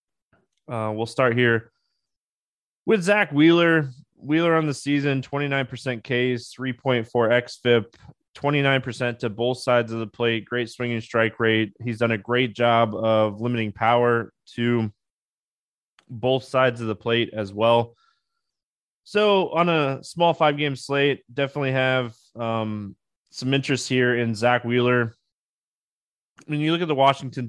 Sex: male